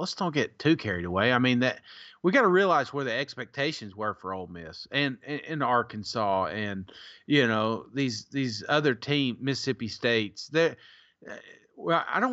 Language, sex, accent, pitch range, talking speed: English, male, American, 115-150 Hz, 180 wpm